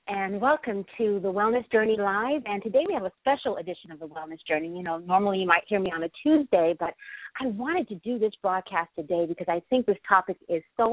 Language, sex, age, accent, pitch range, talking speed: English, female, 50-69, American, 180-240 Hz, 235 wpm